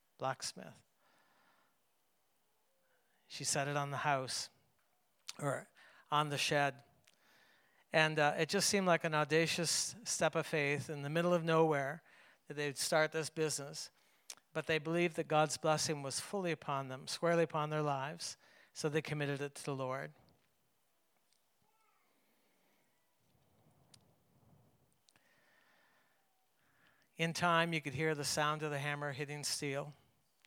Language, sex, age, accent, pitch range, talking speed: English, male, 60-79, American, 140-160 Hz, 130 wpm